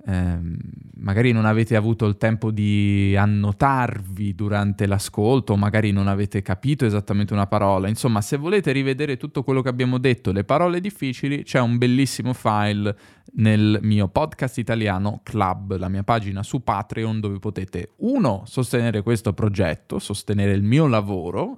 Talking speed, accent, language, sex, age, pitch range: 150 wpm, native, Italian, male, 10-29, 100-120 Hz